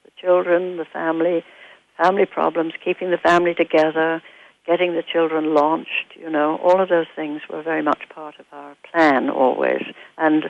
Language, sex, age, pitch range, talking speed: English, female, 60-79, 150-180 Hz, 160 wpm